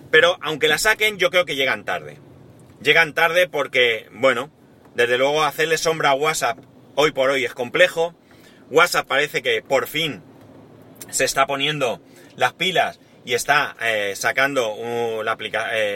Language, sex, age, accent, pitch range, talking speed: Spanish, male, 30-49, Spanish, 125-155 Hz, 145 wpm